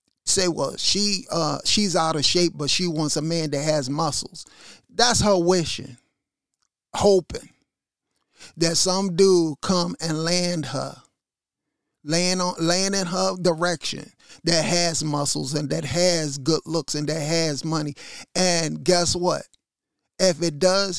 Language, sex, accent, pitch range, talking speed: English, male, American, 160-205 Hz, 145 wpm